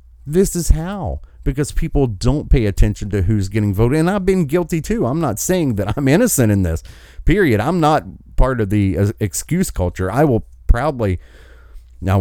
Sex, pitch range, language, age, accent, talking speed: male, 85-130 Hz, English, 40-59, American, 180 wpm